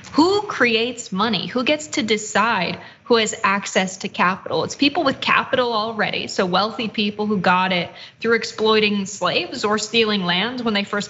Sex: female